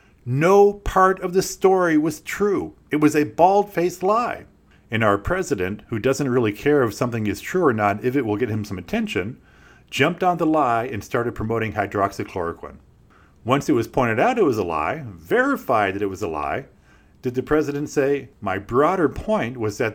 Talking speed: 195 wpm